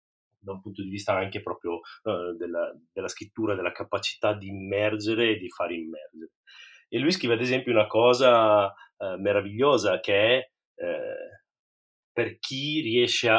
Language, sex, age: Italian, male, 30-49